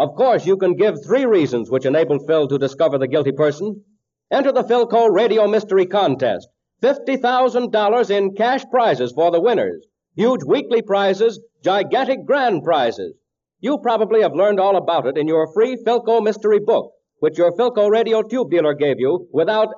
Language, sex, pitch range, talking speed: English, male, 180-240 Hz, 170 wpm